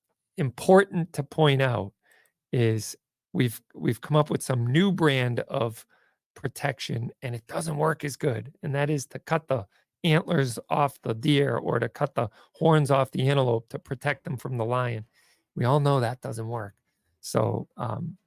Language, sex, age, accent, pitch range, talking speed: English, male, 40-59, American, 125-150 Hz, 175 wpm